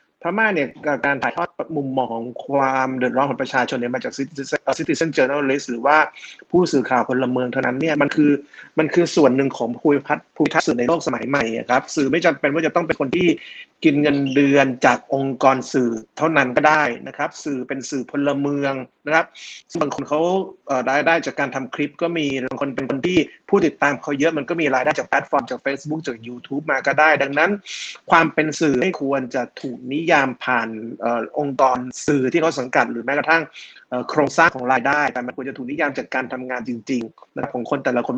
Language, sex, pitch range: Thai, male, 130-155 Hz